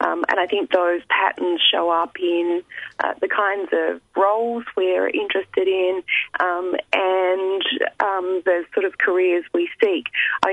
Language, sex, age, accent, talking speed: English, female, 30-49, Australian, 155 wpm